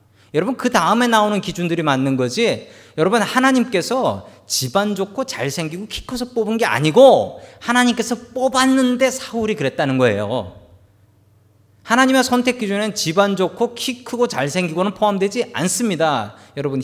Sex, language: male, Korean